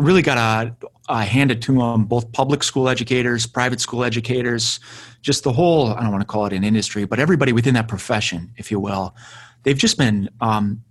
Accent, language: American, English